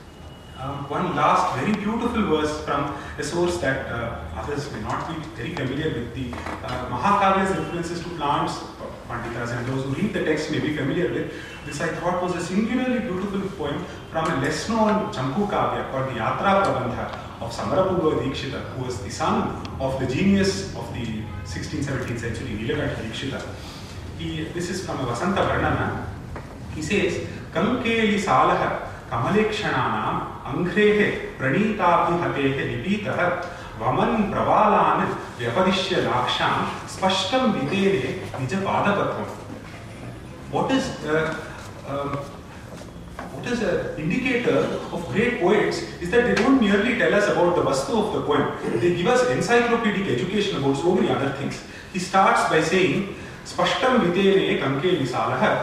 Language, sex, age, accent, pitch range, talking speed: English, male, 30-49, Indian, 125-195 Hz, 140 wpm